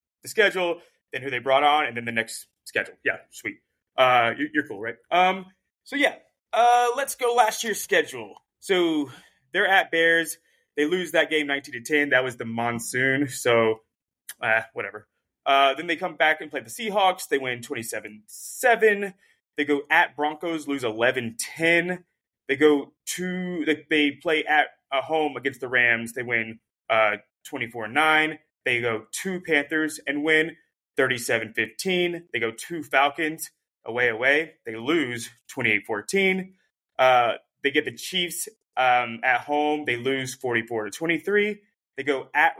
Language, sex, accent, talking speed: English, male, American, 155 wpm